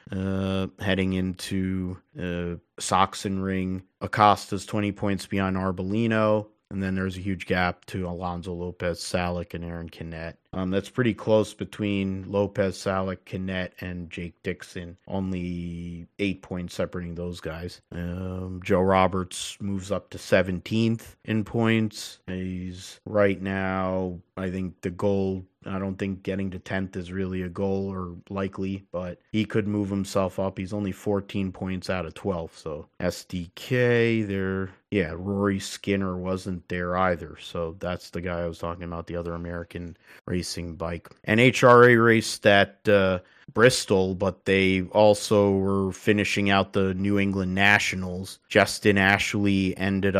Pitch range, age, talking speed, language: 90-100 Hz, 30-49, 145 wpm, English